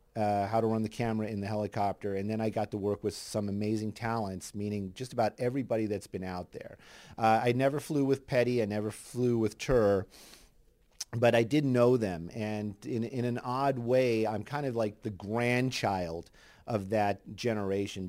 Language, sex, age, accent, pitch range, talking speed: English, male, 40-59, American, 100-120 Hz, 190 wpm